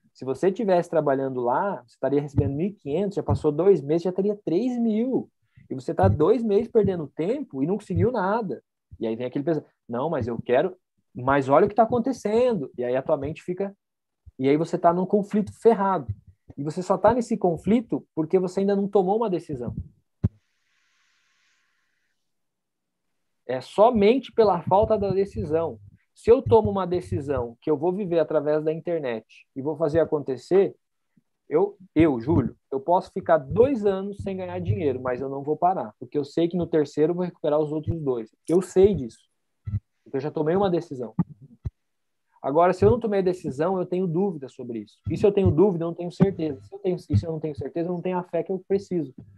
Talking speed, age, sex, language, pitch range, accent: 195 wpm, 20-39, male, Portuguese, 145-195 Hz, Brazilian